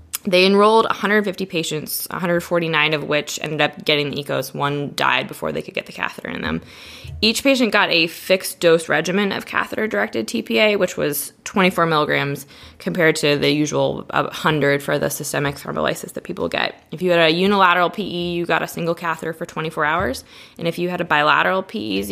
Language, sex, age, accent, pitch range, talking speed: English, female, 20-39, American, 155-190 Hz, 185 wpm